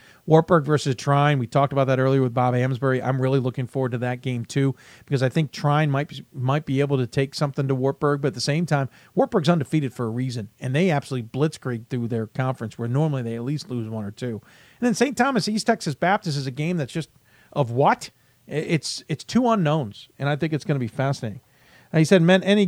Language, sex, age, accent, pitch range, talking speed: English, male, 40-59, American, 125-150 Hz, 240 wpm